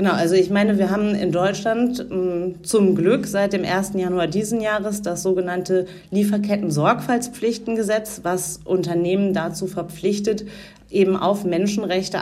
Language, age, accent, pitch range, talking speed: German, 40-59, German, 170-200 Hz, 130 wpm